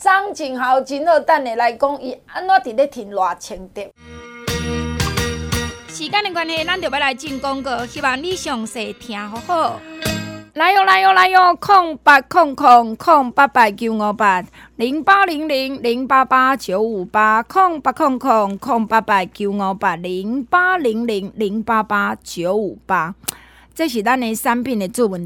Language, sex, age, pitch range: Chinese, female, 20-39, 200-275 Hz